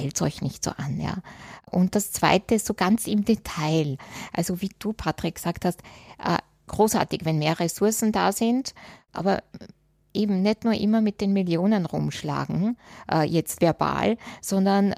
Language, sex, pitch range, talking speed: German, female, 165-205 Hz, 160 wpm